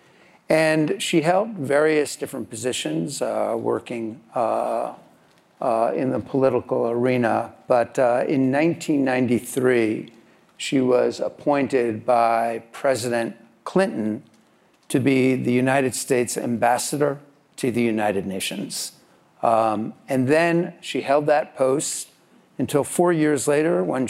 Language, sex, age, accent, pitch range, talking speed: English, male, 50-69, American, 120-150 Hz, 115 wpm